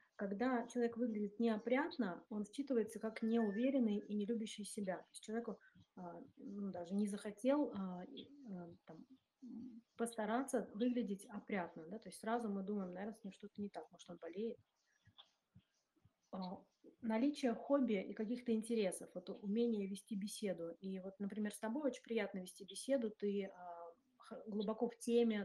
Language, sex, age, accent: Russian, female, 30-49, native